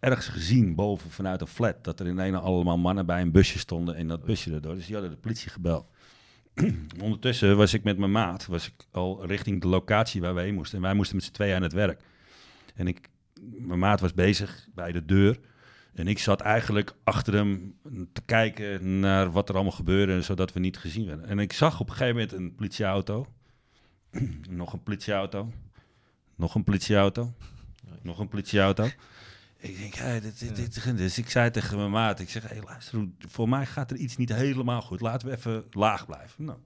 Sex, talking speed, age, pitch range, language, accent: male, 215 wpm, 40-59, 95-115 Hz, Dutch, Dutch